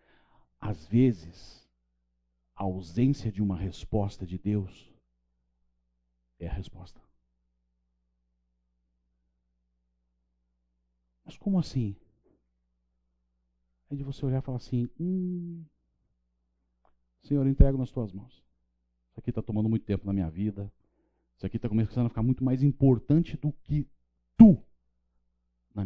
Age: 50-69